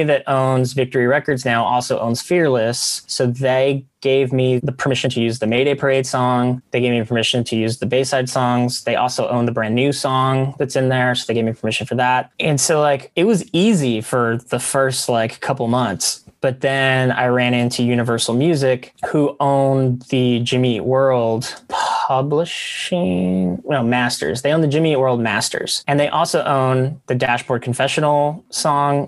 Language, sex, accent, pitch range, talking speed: English, male, American, 115-135 Hz, 180 wpm